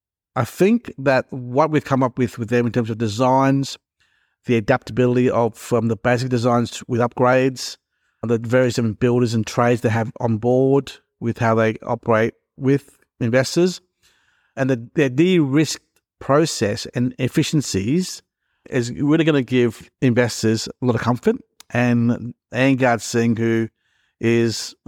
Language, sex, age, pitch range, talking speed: English, male, 50-69, 115-135 Hz, 150 wpm